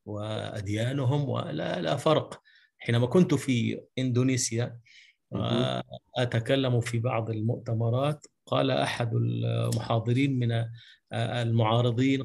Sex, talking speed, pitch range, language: male, 85 wpm, 115-145 Hz, Arabic